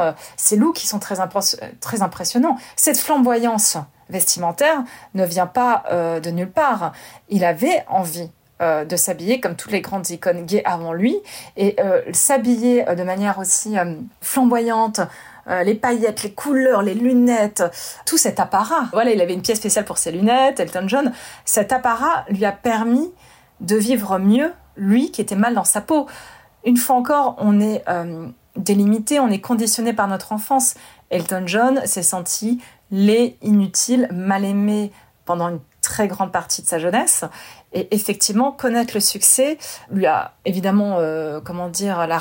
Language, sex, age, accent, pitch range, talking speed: French, female, 30-49, French, 185-245 Hz, 170 wpm